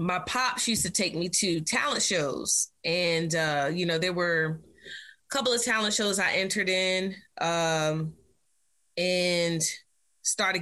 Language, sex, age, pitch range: English, female, 20-39, 170-210 Hz